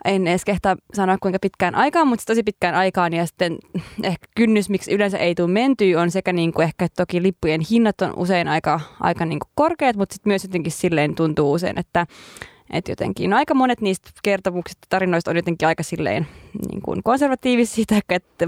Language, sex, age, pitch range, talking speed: Finnish, female, 20-39, 175-225 Hz, 195 wpm